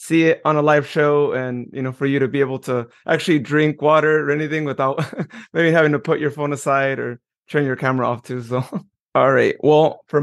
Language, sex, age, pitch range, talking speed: English, male, 20-39, 130-155 Hz, 230 wpm